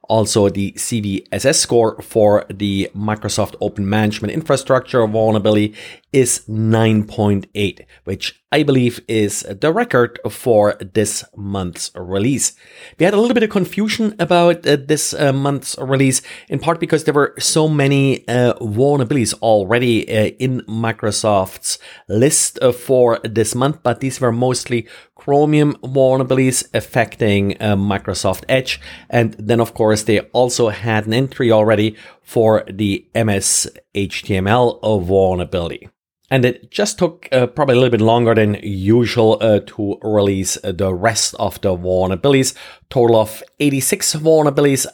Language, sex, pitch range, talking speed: English, male, 105-130 Hz, 135 wpm